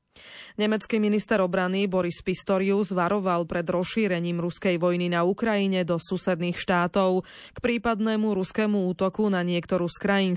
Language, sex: Slovak, female